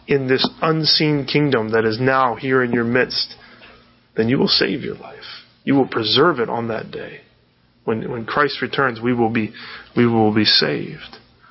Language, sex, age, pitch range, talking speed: English, male, 30-49, 125-160 Hz, 180 wpm